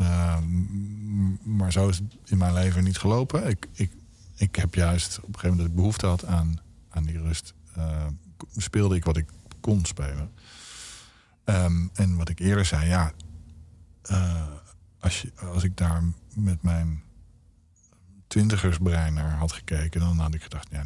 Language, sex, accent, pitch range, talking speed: Dutch, male, Dutch, 80-95 Hz, 165 wpm